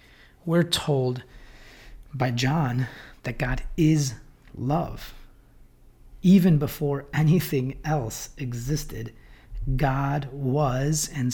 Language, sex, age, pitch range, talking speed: English, male, 40-59, 125-150 Hz, 85 wpm